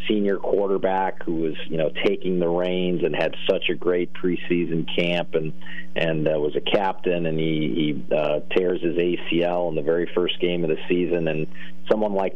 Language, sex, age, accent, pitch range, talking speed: English, male, 40-59, American, 80-90 Hz, 195 wpm